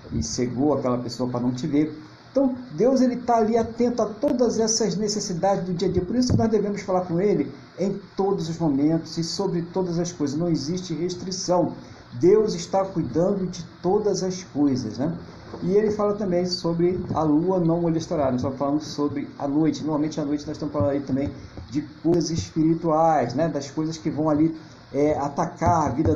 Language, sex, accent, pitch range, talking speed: Portuguese, male, Brazilian, 145-180 Hz, 195 wpm